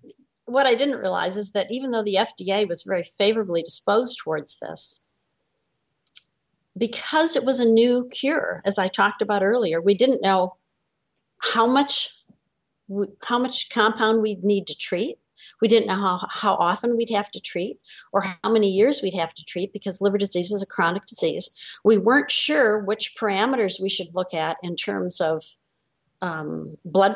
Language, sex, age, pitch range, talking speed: English, female, 40-59, 180-230 Hz, 170 wpm